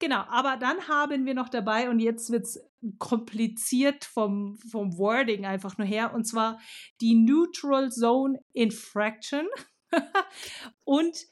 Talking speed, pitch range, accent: 135 wpm, 220-275 Hz, German